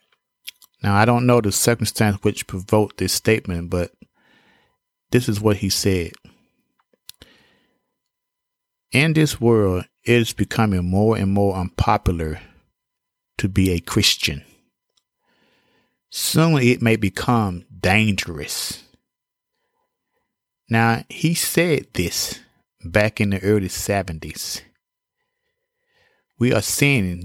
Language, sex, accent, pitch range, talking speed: English, male, American, 95-125 Hz, 105 wpm